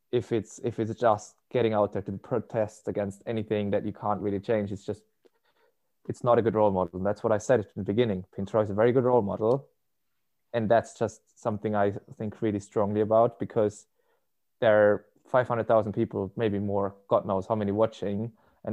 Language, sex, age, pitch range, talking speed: English, male, 20-39, 100-115 Hz, 200 wpm